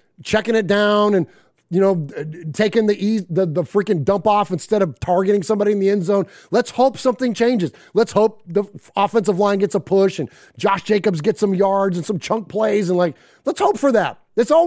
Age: 30-49